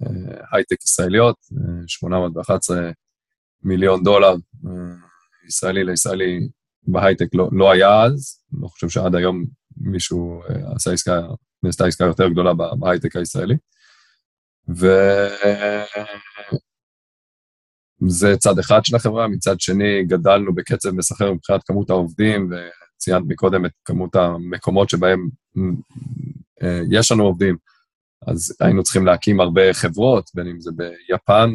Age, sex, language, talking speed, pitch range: 20-39, male, Hebrew, 110 wpm, 90-110 Hz